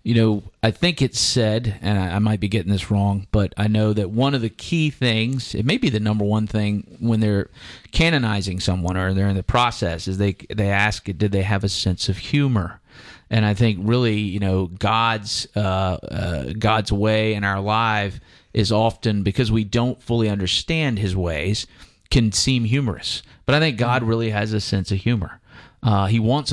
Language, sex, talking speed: English, male, 200 wpm